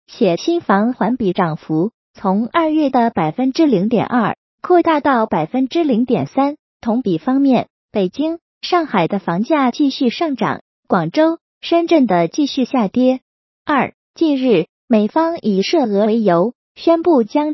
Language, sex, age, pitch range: Chinese, female, 20-39, 205-305 Hz